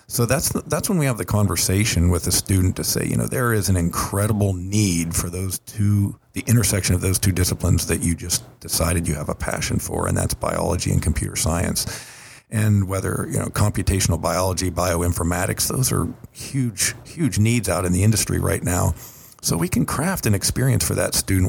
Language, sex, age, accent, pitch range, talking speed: English, male, 50-69, American, 90-110 Hz, 200 wpm